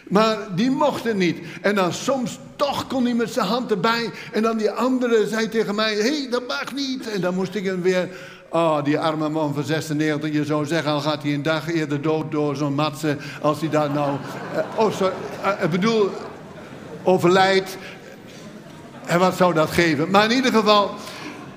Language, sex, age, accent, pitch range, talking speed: Dutch, male, 60-79, Dutch, 155-215 Hz, 190 wpm